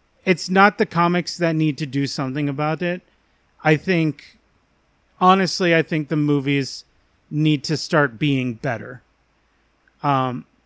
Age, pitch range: 30-49, 125-155 Hz